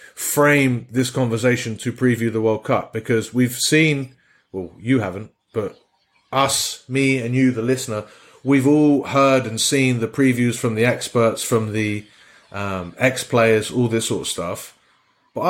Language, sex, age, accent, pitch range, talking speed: English, male, 30-49, British, 110-135 Hz, 160 wpm